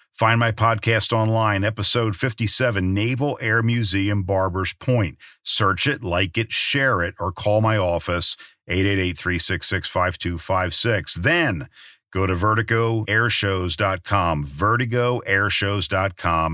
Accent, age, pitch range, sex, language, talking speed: American, 50-69, 90-110 Hz, male, English, 100 wpm